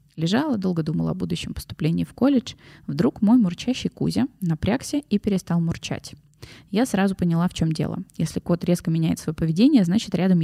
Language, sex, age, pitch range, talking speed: Russian, female, 20-39, 165-215 Hz, 170 wpm